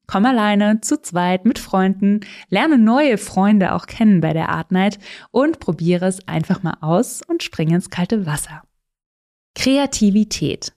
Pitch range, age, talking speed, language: 180-230 Hz, 20-39, 145 wpm, German